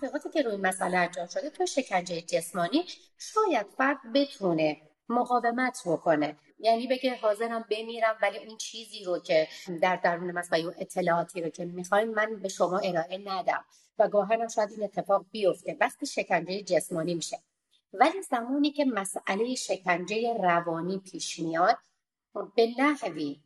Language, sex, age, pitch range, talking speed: Persian, female, 30-49, 185-255 Hz, 150 wpm